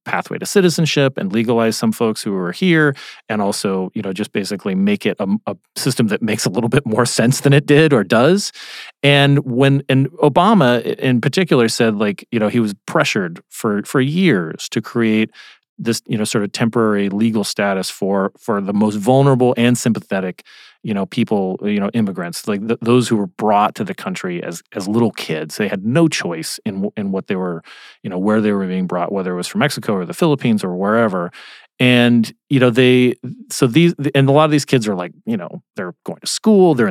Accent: American